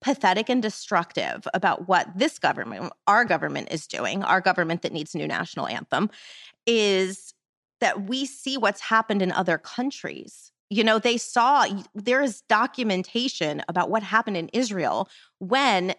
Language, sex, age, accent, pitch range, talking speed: English, female, 30-49, American, 185-240 Hz, 155 wpm